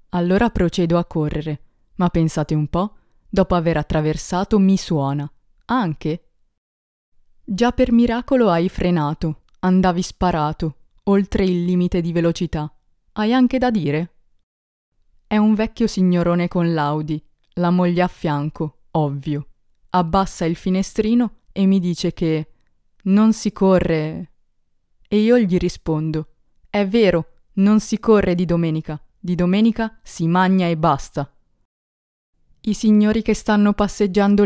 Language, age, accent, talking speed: Italian, 20-39, native, 125 wpm